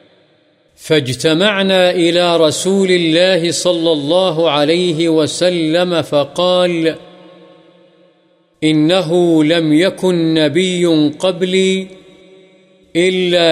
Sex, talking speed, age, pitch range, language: male, 65 wpm, 50-69, 155-180 Hz, Urdu